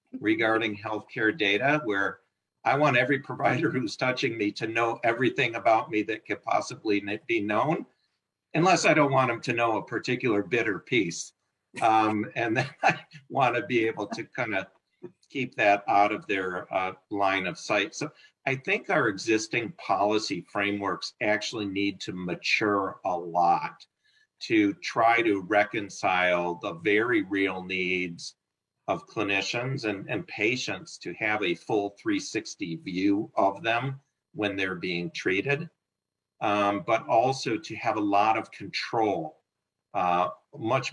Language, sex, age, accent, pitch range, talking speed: English, male, 50-69, American, 95-115 Hz, 150 wpm